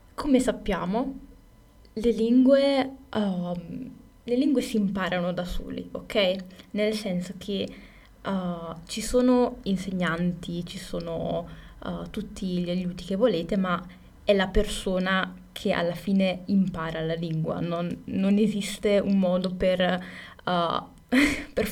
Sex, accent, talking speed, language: female, native, 125 wpm, Italian